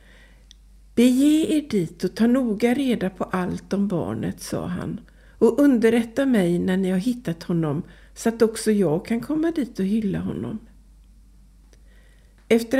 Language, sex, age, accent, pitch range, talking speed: Swedish, female, 60-79, native, 185-245 Hz, 150 wpm